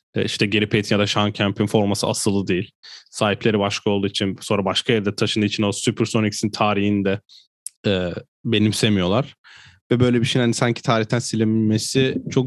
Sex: male